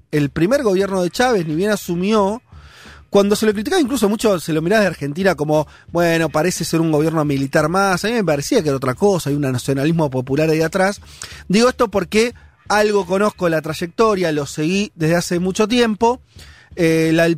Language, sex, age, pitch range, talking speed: Spanish, male, 30-49, 145-200 Hz, 195 wpm